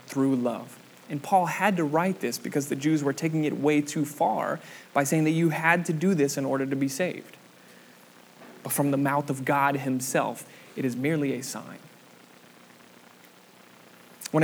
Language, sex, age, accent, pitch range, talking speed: English, male, 20-39, American, 130-155 Hz, 180 wpm